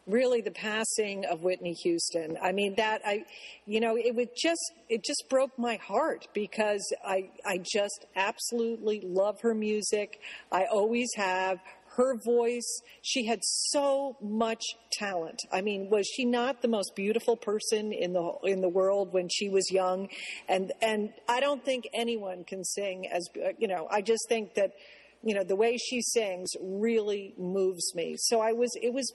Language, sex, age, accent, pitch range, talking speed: English, female, 50-69, American, 185-230 Hz, 175 wpm